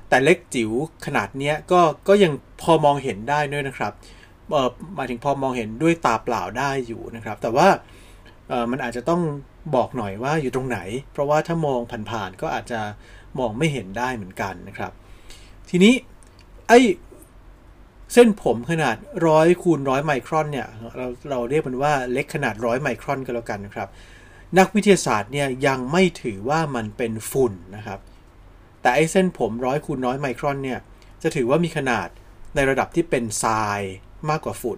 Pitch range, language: 105-150 Hz, Thai